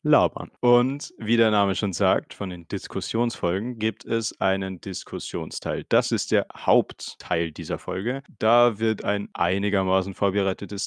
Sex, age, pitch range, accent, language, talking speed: male, 30-49, 95-115 Hz, German, German, 140 wpm